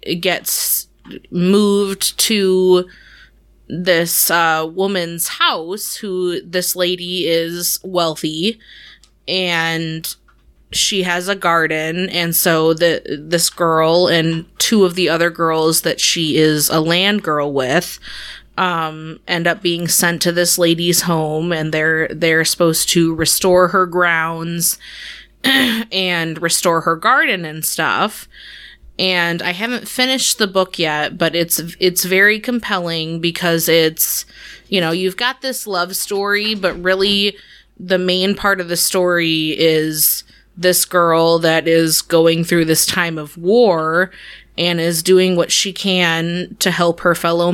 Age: 20-39